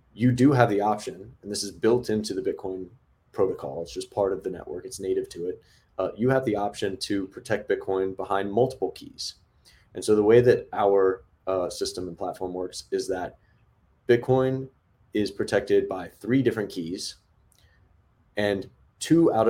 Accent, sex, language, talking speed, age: American, male, English, 175 wpm, 30-49